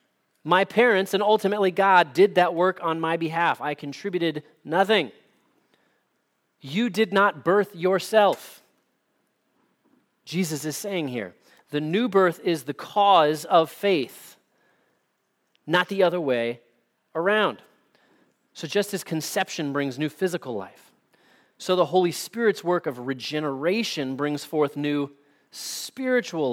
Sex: male